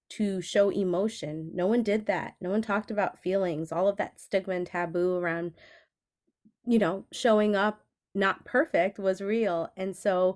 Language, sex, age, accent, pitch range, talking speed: English, female, 30-49, American, 185-220 Hz, 170 wpm